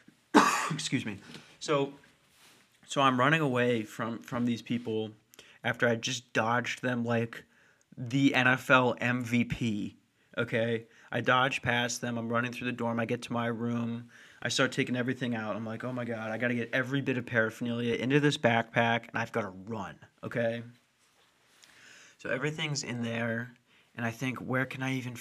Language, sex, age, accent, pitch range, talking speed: English, male, 30-49, American, 115-125 Hz, 175 wpm